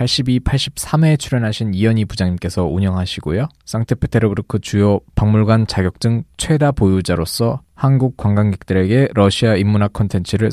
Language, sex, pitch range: Korean, male, 95-125 Hz